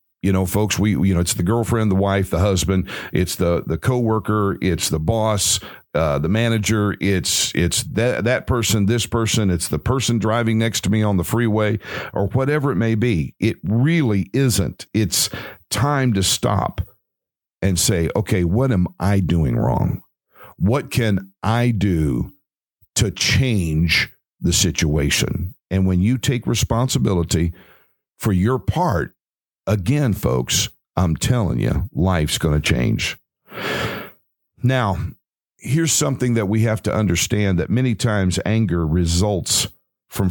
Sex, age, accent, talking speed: male, 50-69, American, 145 wpm